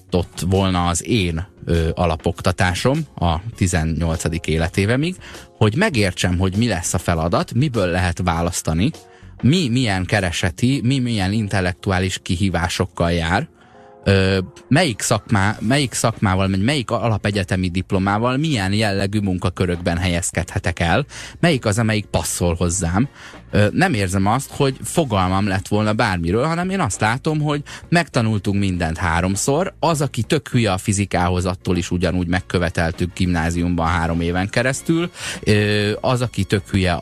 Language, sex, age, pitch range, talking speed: Hungarian, male, 20-39, 90-110 Hz, 125 wpm